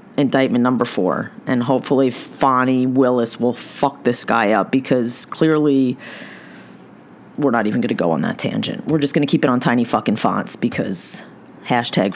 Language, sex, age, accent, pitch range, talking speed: English, female, 30-49, American, 130-220 Hz, 175 wpm